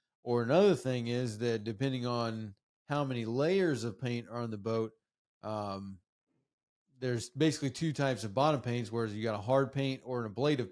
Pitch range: 120-145 Hz